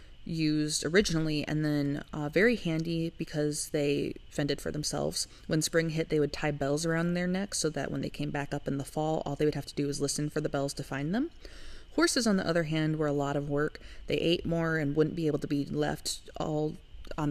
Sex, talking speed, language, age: female, 235 wpm, English, 20-39